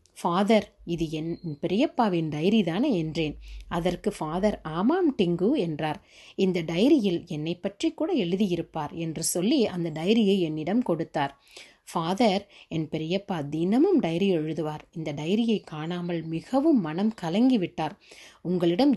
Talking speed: 115 wpm